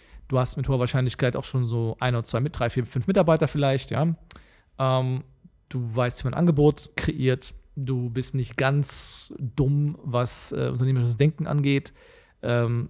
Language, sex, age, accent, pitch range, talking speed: German, male, 40-59, German, 120-150 Hz, 170 wpm